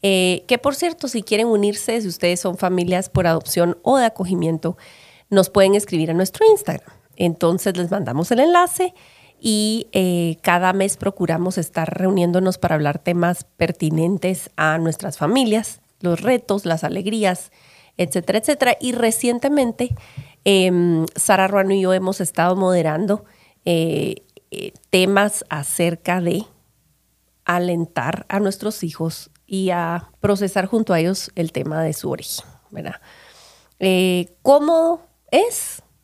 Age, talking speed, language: 40-59, 135 wpm, Spanish